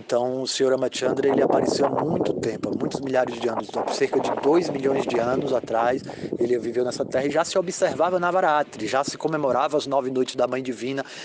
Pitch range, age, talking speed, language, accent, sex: 125-160 Hz, 20-39, 205 wpm, Portuguese, Brazilian, male